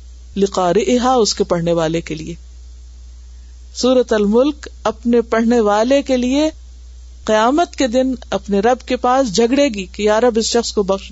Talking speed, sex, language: 155 wpm, female, Urdu